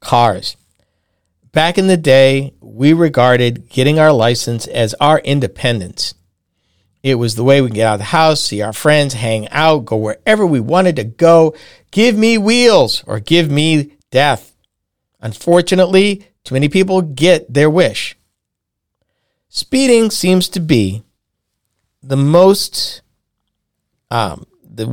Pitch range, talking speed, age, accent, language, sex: 115-165 Hz, 135 wpm, 50-69, American, English, male